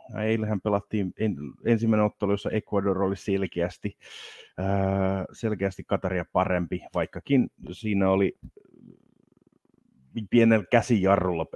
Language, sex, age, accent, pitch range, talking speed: Finnish, male, 30-49, native, 80-100 Hz, 90 wpm